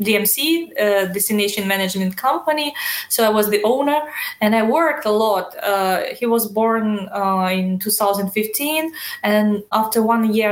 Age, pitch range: 20-39, 200-235 Hz